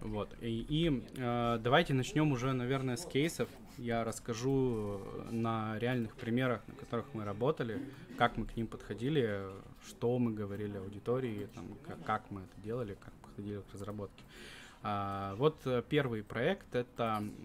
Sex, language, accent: male, Russian, native